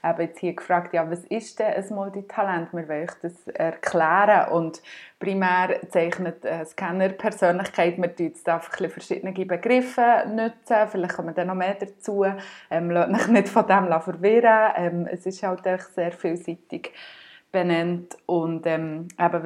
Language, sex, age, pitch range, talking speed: German, female, 20-39, 170-195 Hz, 140 wpm